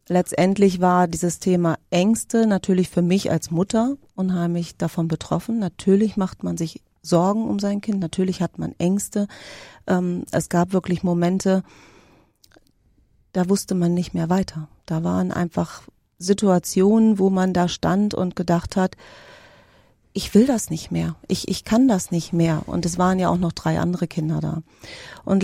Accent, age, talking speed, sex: German, 40-59, 160 wpm, female